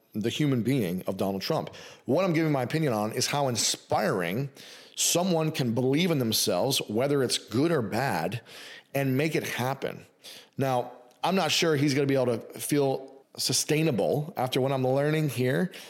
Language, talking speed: English, 175 wpm